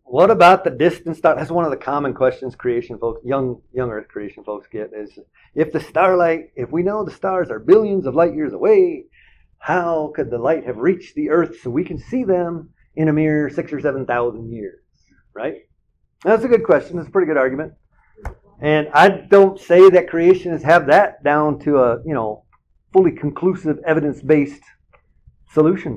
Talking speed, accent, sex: 190 wpm, American, male